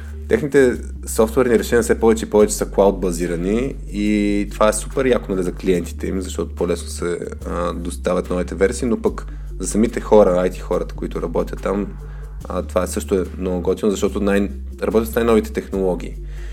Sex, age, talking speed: male, 20-39, 175 wpm